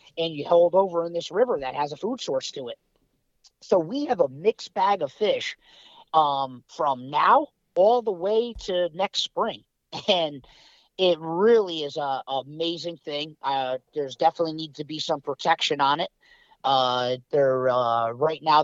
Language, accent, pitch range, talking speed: English, American, 135-170 Hz, 175 wpm